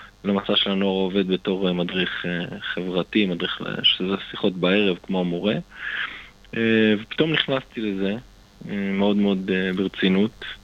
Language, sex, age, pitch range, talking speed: Hebrew, male, 20-39, 100-115 Hz, 105 wpm